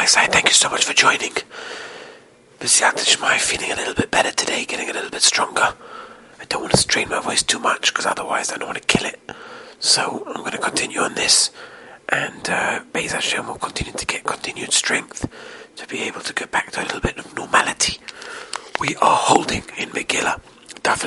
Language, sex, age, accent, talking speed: English, male, 40-59, British, 205 wpm